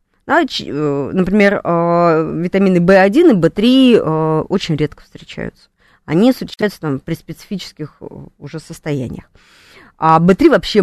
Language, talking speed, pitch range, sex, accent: Russian, 95 wpm, 150-210 Hz, female, native